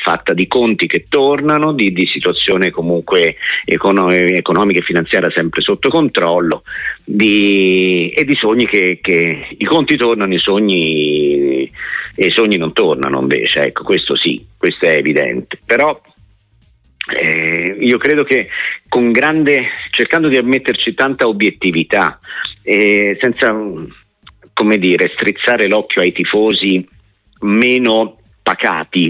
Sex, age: male, 50-69